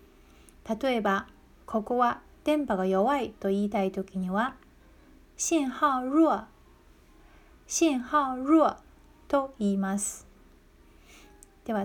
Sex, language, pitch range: female, Japanese, 195-260 Hz